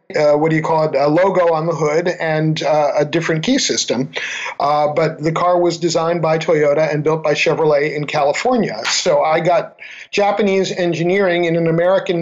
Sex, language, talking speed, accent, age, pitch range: male, English, 190 wpm, American, 50-69, 155-180 Hz